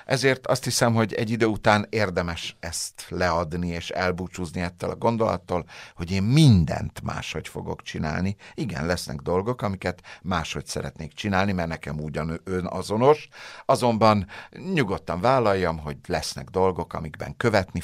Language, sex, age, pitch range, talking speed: Hungarian, male, 60-79, 90-120 Hz, 135 wpm